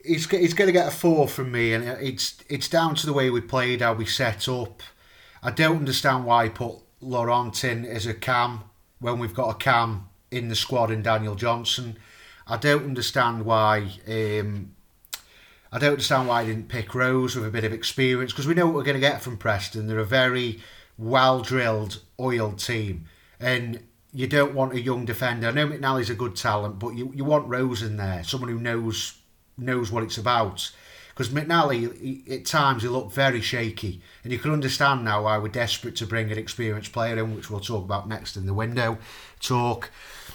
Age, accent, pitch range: 30-49, British, 110-130 Hz